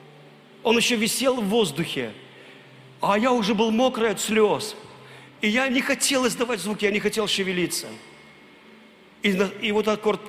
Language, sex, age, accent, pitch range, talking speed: Russian, male, 40-59, native, 185-235 Hz, 150 wpm